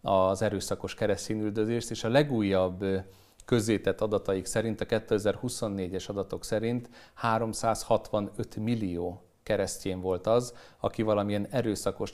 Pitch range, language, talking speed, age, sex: 95-120 Hz, Hungarian, 105 wpm, 40-59, male